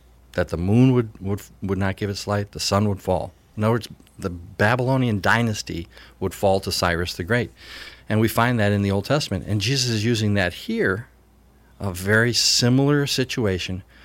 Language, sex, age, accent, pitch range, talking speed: English, male, 50-69, American, 90-115 Hz, 190 wpm